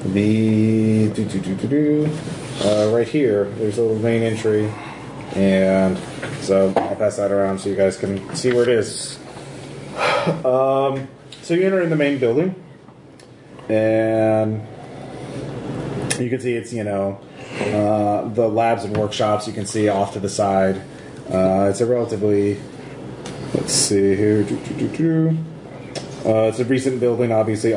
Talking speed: 135 wpm